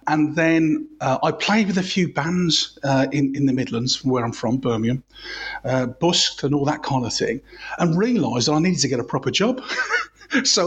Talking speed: 210 wpm